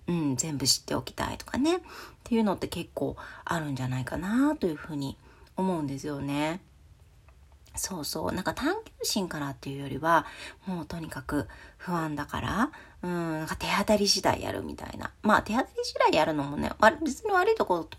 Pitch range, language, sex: 140-220 Hz, Japanese, female